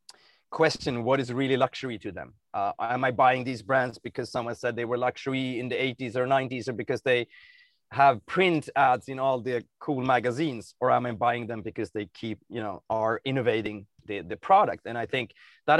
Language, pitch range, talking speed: English, 115-140 Hz, 205 wpm